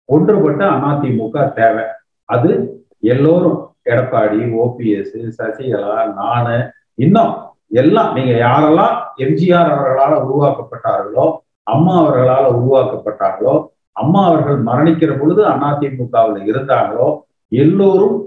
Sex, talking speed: male, 85 wpm